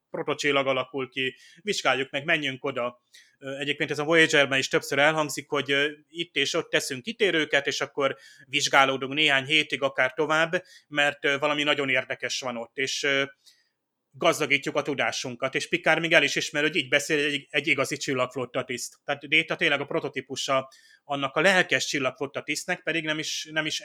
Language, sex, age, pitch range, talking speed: Hungarian, male, 30-49, 135-160 Hz, 160 wpm